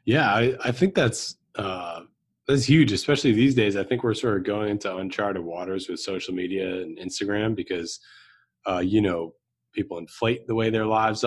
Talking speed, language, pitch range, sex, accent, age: 185 wpm, English, 90-115 Hz, male, American, 30-49